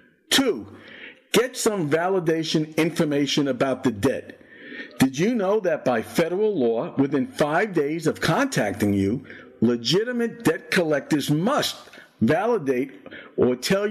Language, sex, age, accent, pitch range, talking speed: English, male, 50-69, American, 155-245 Hz, 120 wpm